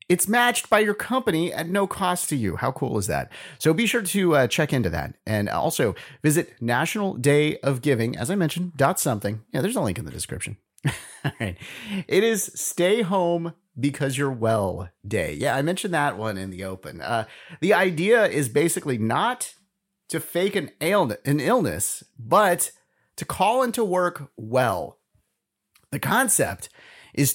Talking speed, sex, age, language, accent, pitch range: 175 wpm, male, 30-49, English, American, 130-195 Hz